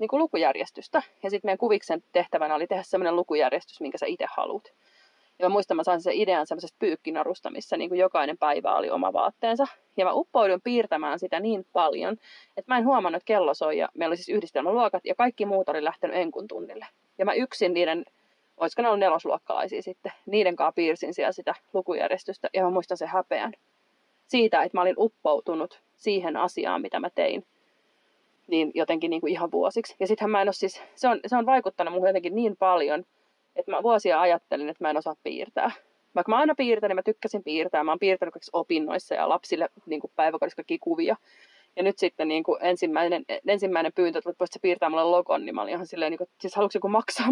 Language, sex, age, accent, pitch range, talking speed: Finnish, female, 30-49, native, 170-230 Hz, 205 wpm